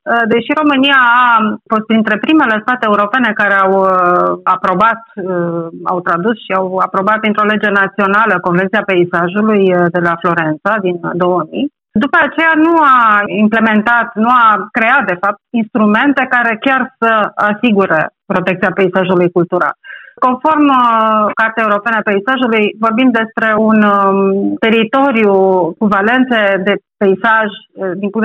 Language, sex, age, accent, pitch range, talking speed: Romanian, female, 30-49, native, 195-230 Hz, 125 wpm